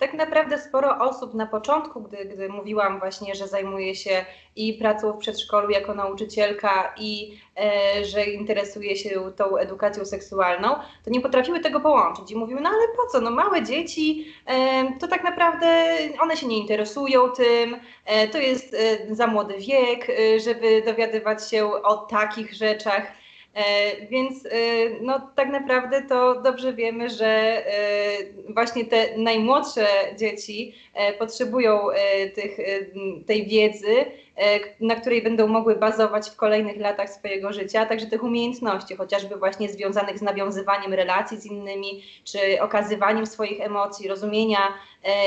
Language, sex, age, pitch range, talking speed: Polish, female, 20-39, 200-245 Hz, 145 wpm